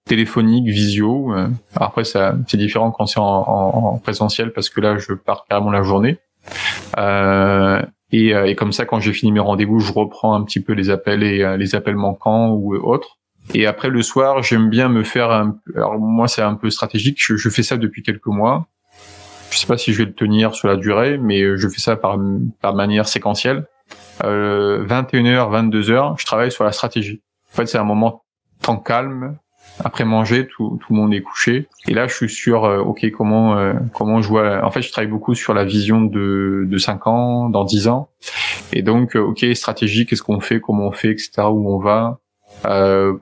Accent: French